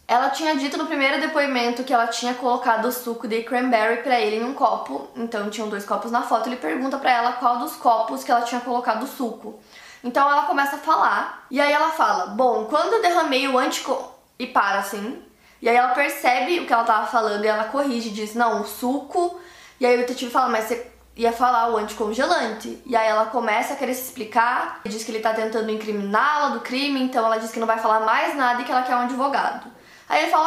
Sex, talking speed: female, 230 wpm